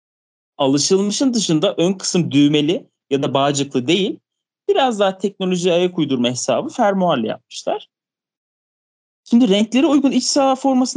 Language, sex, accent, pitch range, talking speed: Turkish, male, native, 145-230 Hz, 125 wpm